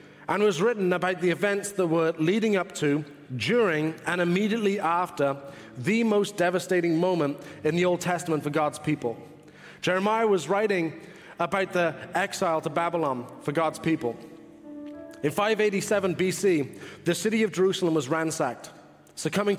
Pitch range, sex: 165-205 Hz, male